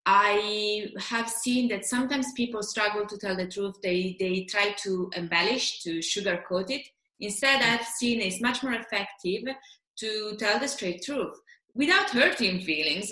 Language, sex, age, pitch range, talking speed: English, female, 20-39, 200-265 Hz, 155 wpm